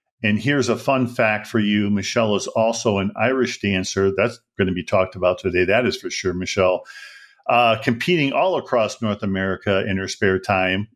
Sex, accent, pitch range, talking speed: male, American, 100-120 Hz, 190 wpm